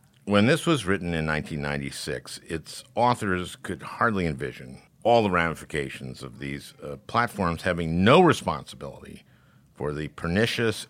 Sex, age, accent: male, 50-69, American